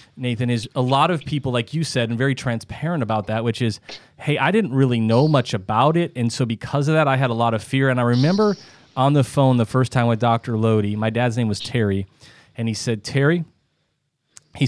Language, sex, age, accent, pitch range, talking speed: English, male, 30-49, American, 115-135 Hz, 235 wpm